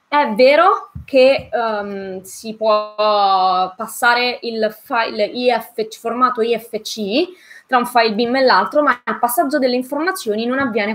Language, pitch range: Italian, 205-250 Hz